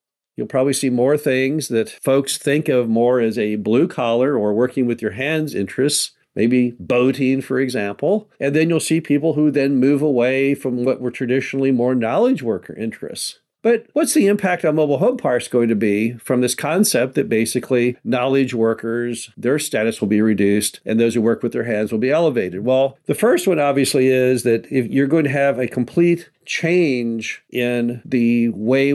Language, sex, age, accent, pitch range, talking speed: English, male, 50-69, American, 115-145 Hz, 190 wpm